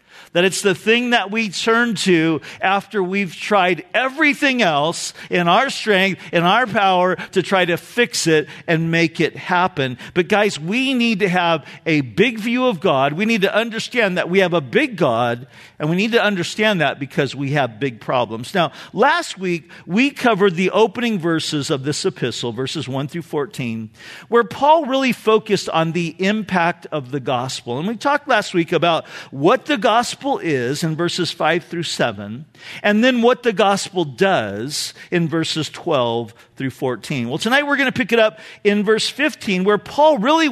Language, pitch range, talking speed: English, 155-220 Hz, 185 wpm